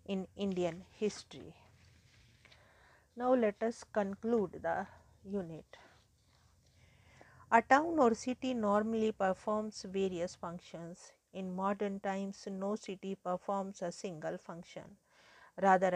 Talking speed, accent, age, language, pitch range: 100 wpm, Indian, 50-69, English, 185-210 Hz